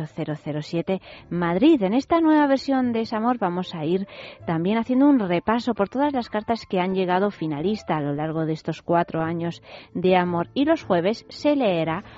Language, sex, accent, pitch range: Spanish, female, Spanish, 160-215 Hz